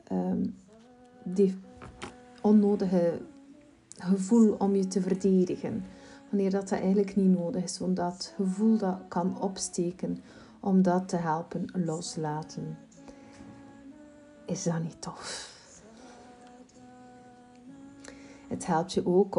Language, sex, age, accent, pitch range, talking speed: Dutch, female, 40-59, Dutch, 175-225 Hz, 105 wpm